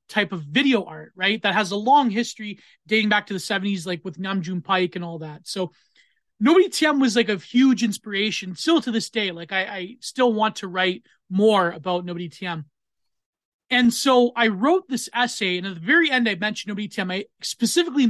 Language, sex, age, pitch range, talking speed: English, male, 20-39, 185-235 Hz, 205 wpm